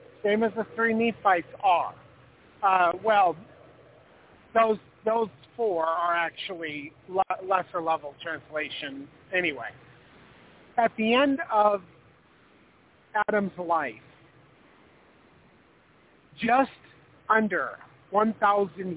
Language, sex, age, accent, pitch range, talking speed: English, male, 50-69, American, 165-220 Hz, 80 wpm